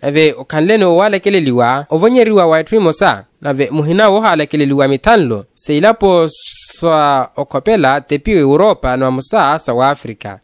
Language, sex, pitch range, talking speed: Portuguese, male, 140-210 Hz, 145 wpm